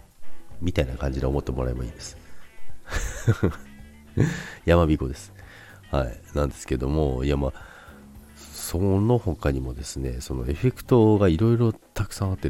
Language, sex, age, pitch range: Japanese, male, 40-59, 70-105 Hz